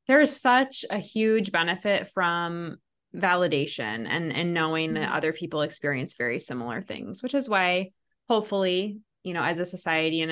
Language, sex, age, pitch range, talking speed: English, female, 20-39, 165-220 Hz, 165 wpm